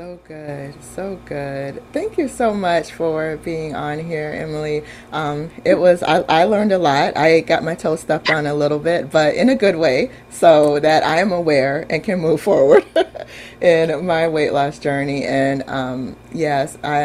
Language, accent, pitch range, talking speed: English, American, 140-165 Hz, 185 wpm